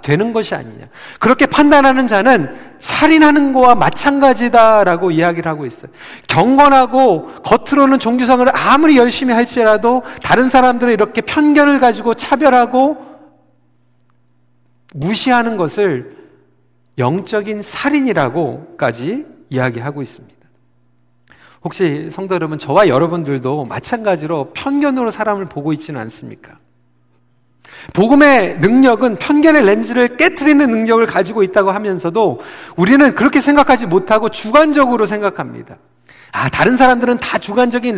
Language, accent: Korean, native